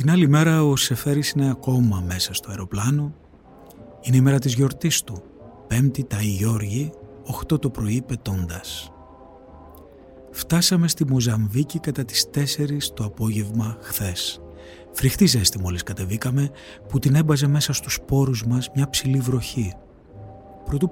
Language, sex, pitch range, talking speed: Greek, male, 105-150 Hz, 135 wpm